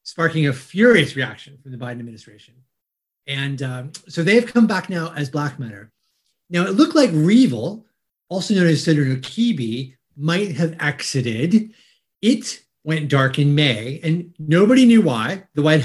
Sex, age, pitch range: male, 30-49, 140-195 Hz